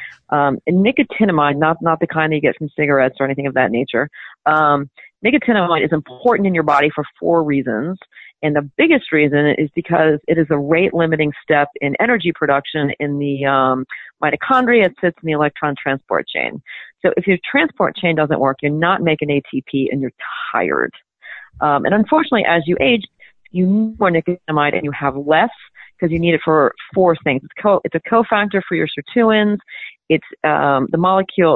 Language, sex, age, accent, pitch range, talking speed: English, female, 40-59, American, 145-190 Hz, 185 wpm